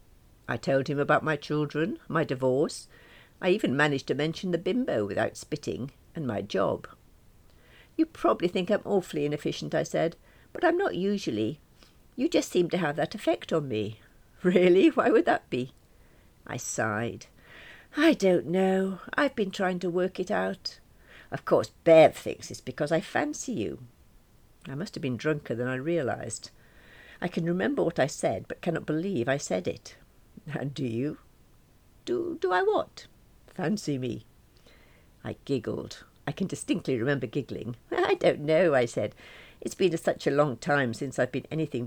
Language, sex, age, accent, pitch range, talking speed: English, female, 60-79, British, 130-190 Hz, 170 wpm